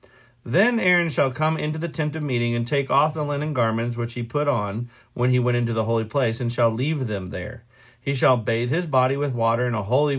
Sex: male